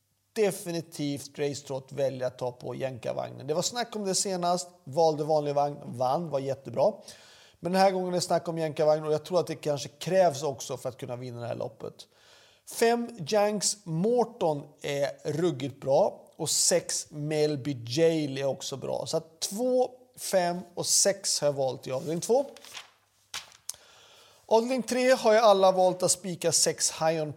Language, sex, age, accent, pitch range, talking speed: Swedish, male, 40-59, native, 130-165 Hz, 175 wpm